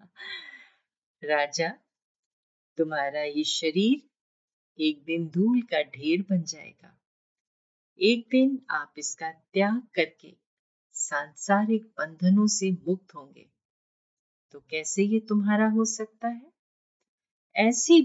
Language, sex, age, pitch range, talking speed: Hindi, female, 50-69, 145-220 Hz, 100 wpm